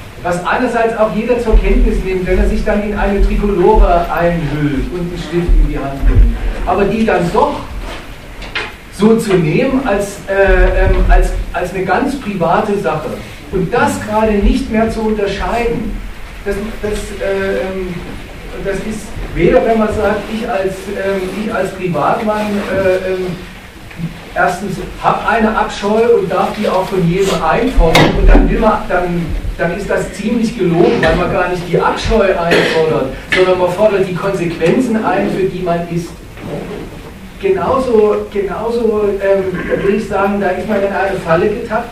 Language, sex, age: German, male, 40-59